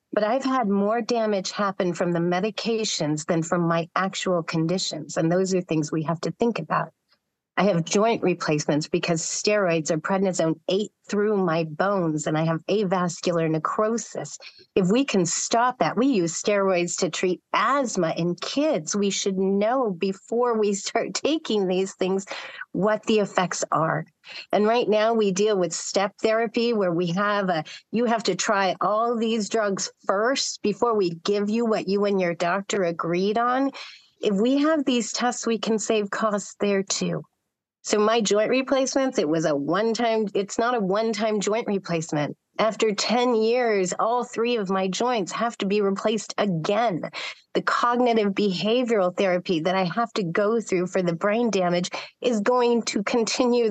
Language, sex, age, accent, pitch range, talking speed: English, female, 40-59, American, 180-230 Hz, 170 wpm